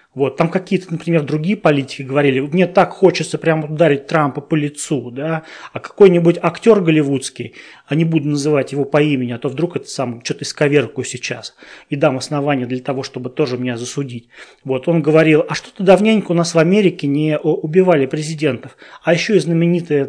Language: Russian